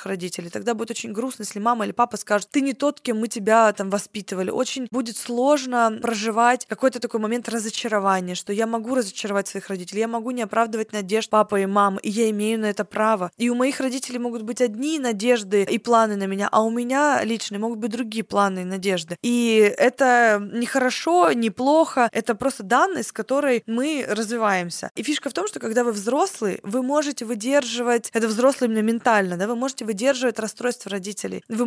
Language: Russian